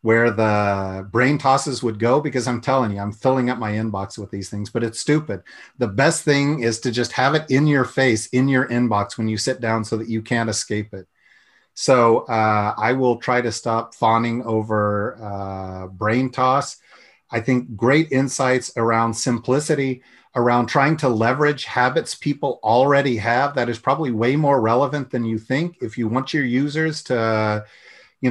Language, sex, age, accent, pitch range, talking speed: English, male, 40-59, American, 110-135 Hz, 185 wpm